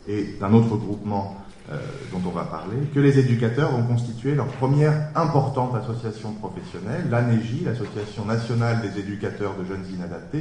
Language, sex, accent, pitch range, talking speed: French, male, French, 105-135 Hz, 155 wpm